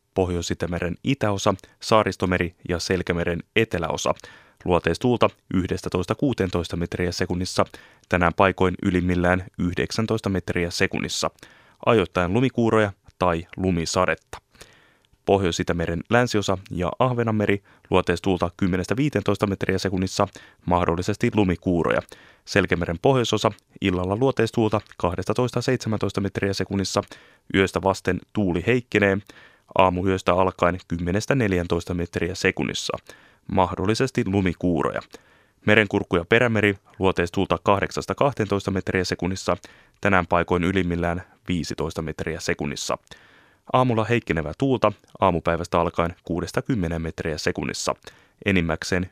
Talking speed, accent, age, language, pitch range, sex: 90 wpm, native, 20-39, Finnish, 90-105 Hz, male